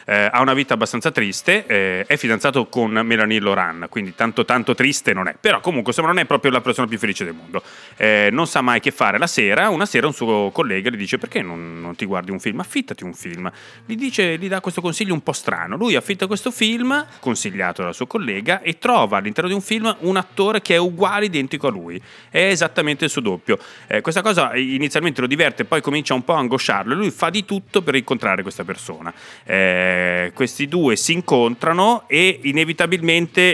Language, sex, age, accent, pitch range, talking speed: Italian, male, 30-49, native, 115-170 Hz, 210 wpm